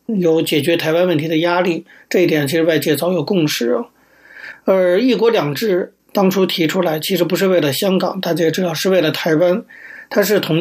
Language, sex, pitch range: Chinese, male, 165-205 Hz